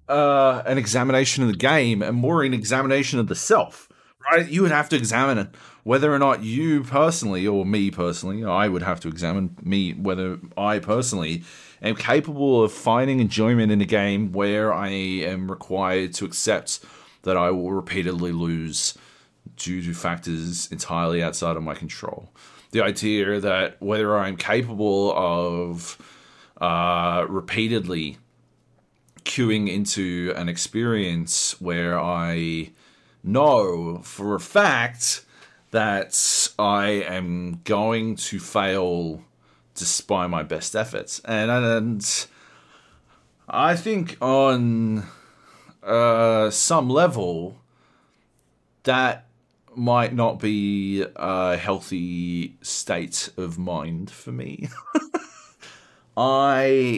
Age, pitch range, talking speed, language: 30-49, 90-115 Hz, 120 wpm, English